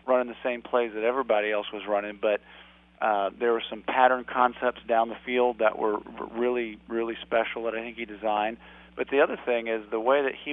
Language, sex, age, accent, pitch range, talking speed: English, male, 40-59, American, 105-120 Hz, 215 wpm